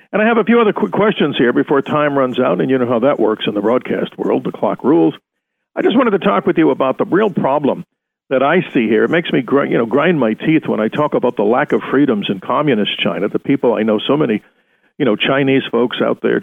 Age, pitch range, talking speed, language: 50-69, 135-165 Hz, 265 wpm, English